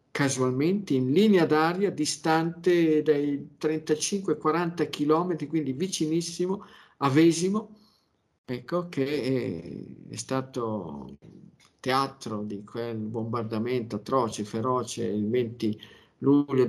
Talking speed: 85 wpm